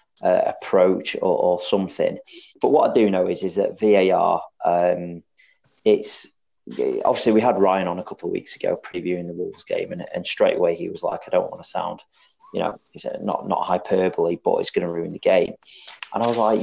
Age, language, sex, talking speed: 30-49, English, male, 210 wpm